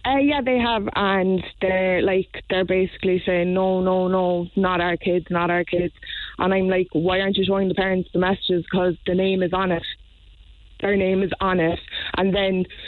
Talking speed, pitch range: 200 wpm, 185-205 Hz